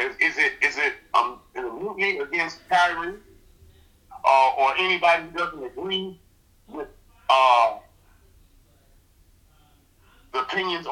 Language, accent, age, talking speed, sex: English, American, 50-69, 120 wpm, male